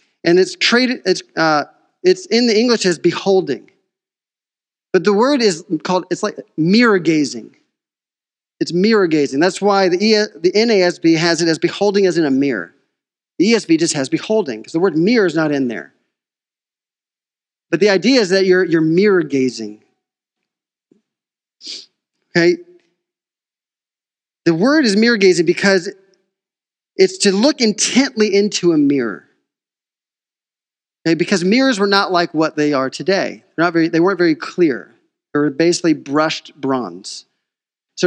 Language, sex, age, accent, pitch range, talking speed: English, male, 40-59, American, 160-205 Hz, 145 wpm